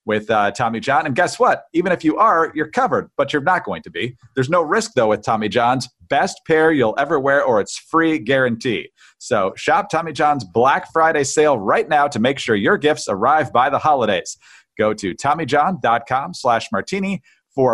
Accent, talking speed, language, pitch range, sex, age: American, 200 wpm, English, 120-165 Hz, male, 40-59